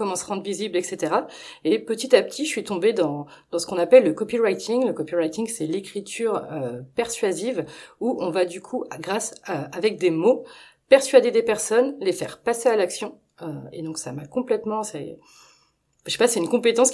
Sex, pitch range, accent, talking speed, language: female, 160-225 Hz, French, 200 wpm, French